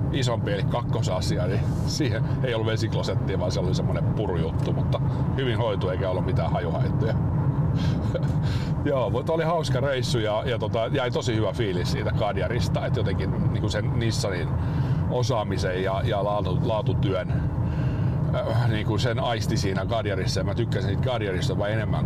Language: Finnish